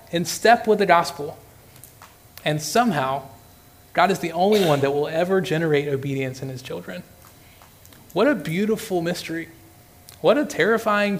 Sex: male